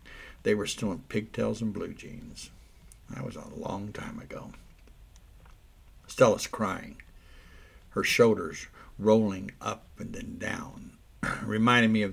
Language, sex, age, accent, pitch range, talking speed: English, male, 60-79, American, 95-115 Hz, 130 wpm